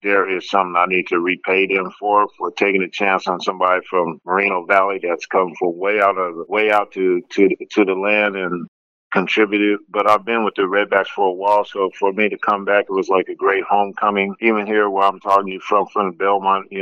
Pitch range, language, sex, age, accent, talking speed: 95-105 Hz, English, male, 50-69, American, 235 wpm